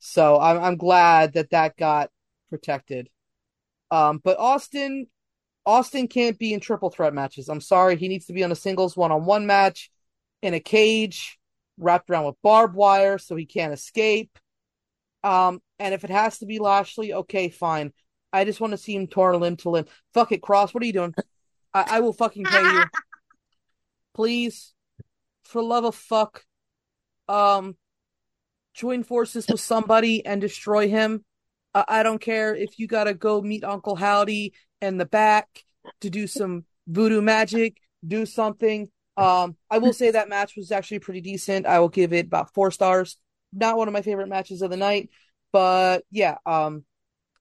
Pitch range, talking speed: 180-220 Hz, 170 wpm